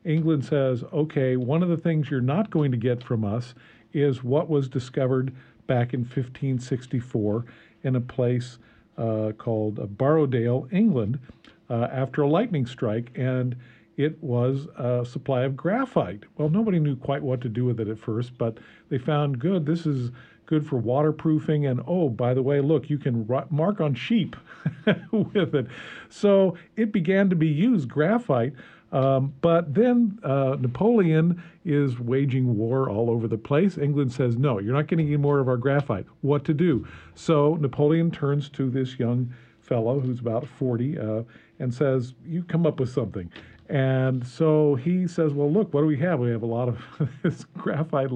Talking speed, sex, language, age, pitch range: 175 wpm, male, English, 50-69, 125-155 Hz